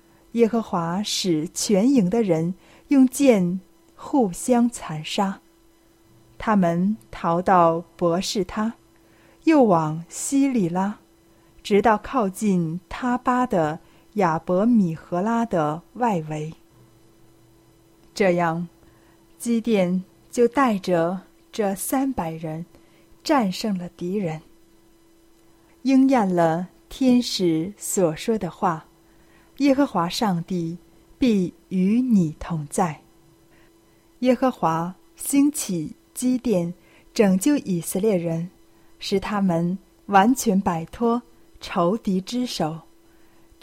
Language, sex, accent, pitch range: Chinese, female, native, 165-225 Hz